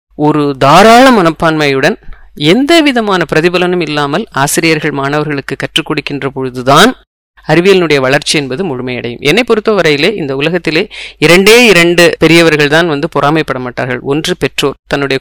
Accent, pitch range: Indian, 145-205 Hz